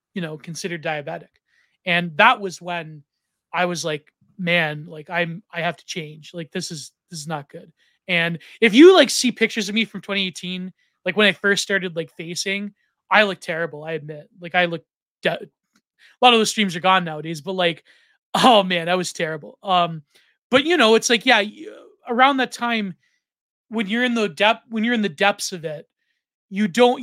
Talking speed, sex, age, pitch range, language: 200 wpm, male, 20-39, 170-220 Hz, English